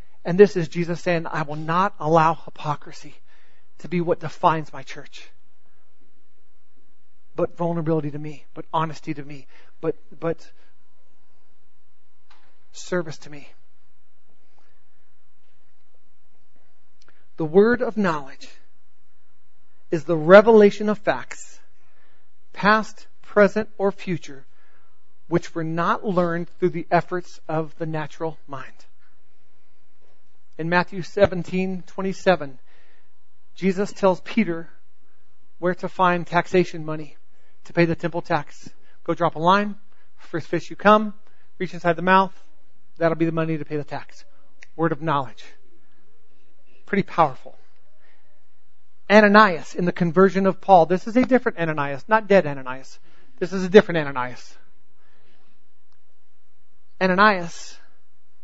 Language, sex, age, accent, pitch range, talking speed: English, male, 40-59, American, 145-185 Hz, 120 wpm